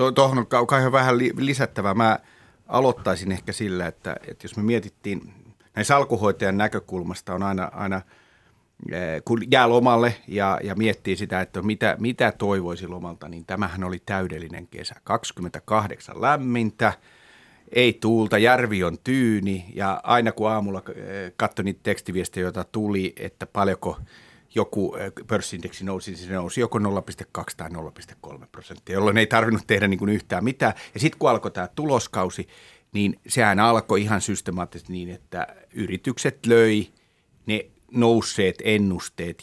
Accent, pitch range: native, 95-115 Hz